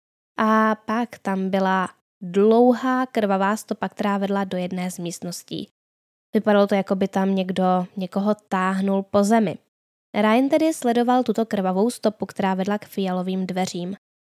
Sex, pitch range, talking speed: female, 190-230 Hz, 145 wpm